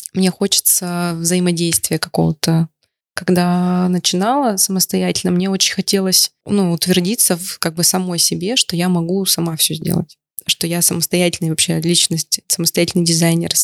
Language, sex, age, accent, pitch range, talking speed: Russian, female, 20-39, native, 165-190 Hz, 130 wpm